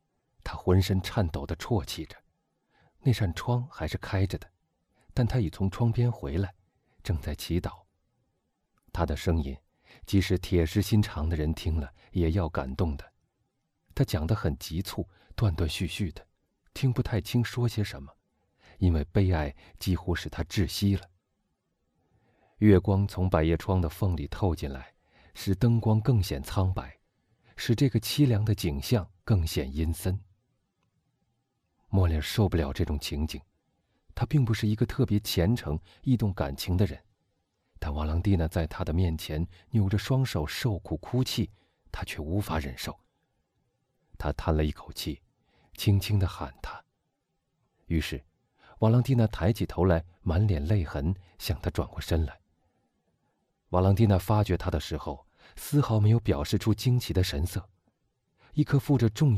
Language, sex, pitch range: Chinese, male, 85-110 Hz